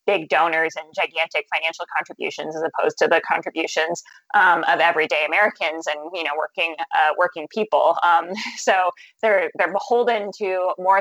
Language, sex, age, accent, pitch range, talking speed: English, female, 20-39, American, 160-195 Hz, 160 wpm